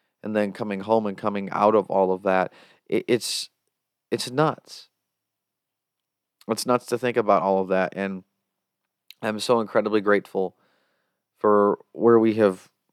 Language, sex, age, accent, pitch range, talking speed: English, male, 30-49, American, 100-125 Hz, 150 wpm